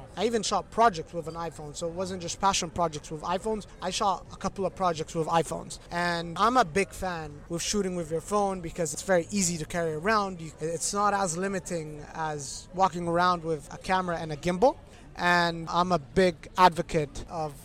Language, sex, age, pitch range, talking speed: English, male, 30-49, 160-185 Hz, 200 wpm